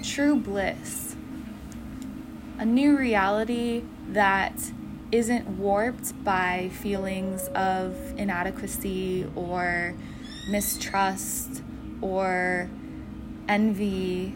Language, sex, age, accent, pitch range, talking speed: English, female, 20-39, American, 185-210 Hz, 65 wpm